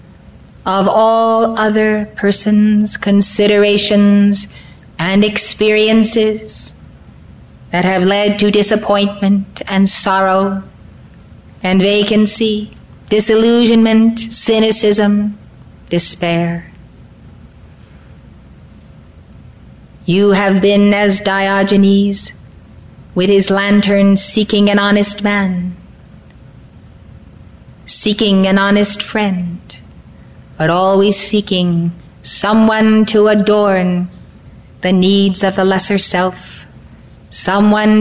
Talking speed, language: 75 wpm, English